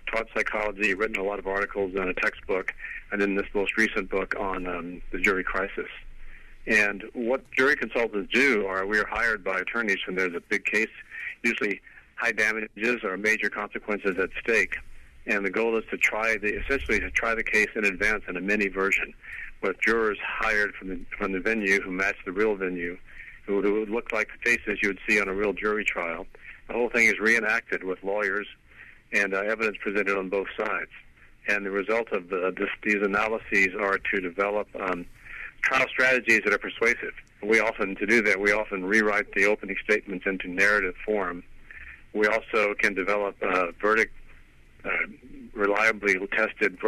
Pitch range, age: 95-110 Hz, 50-69